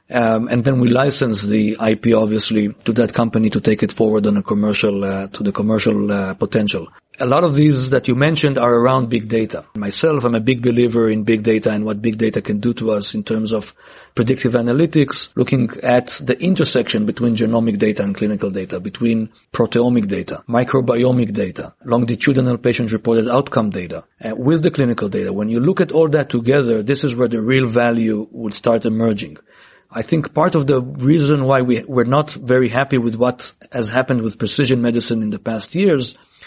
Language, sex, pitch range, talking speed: English, male, 110-135 Hz, 195 wpm